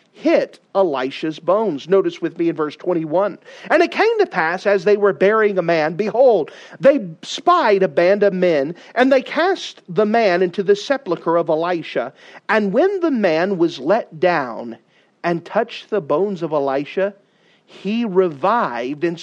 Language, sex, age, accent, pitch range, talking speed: English, male, 40-59, American, 190-270 Hz, 165 wpm